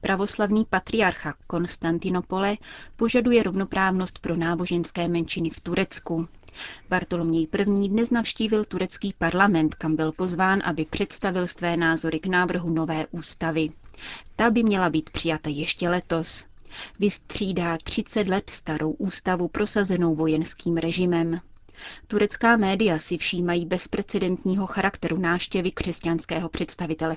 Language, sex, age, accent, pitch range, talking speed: Czech, female, 30-49, native, 165-195 Hz, 115 wpm